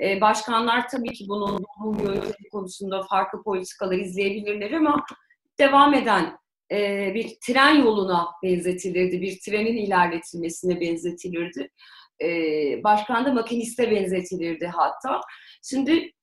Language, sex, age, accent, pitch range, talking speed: Turkish, female, 30-49, native, 200-285 Hz, 100 wpm